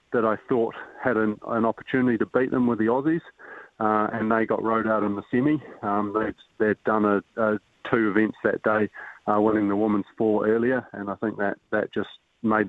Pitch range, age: 100-110 Hz, 30-49